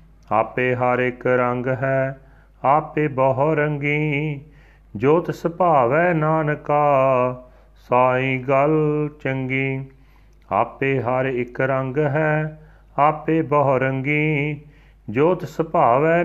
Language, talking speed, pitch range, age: Punjabi, 80 wpm, 115-140 Hz, 40-59